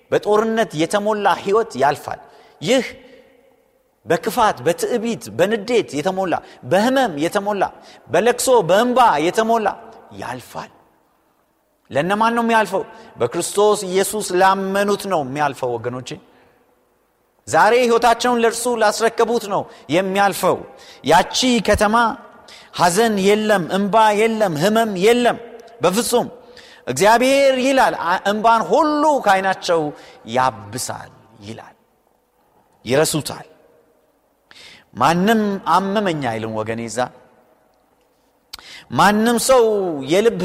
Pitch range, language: 150-230 Hz, Amharic